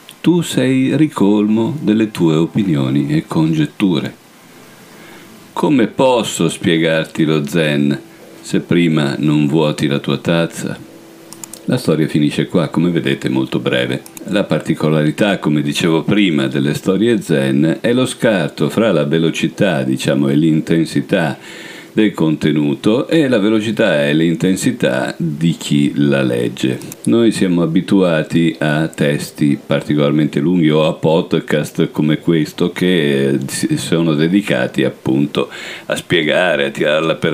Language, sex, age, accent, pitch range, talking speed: Italian, male, 50-69, native, 70-85 Hz, 125 wpm